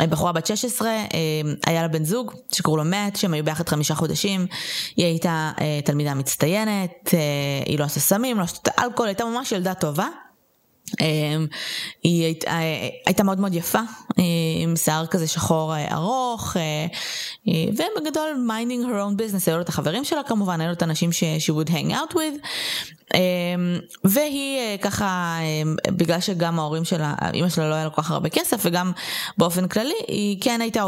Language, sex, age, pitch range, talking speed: Hebrew, female, 20-39, 165-215 Hz, 155 wpm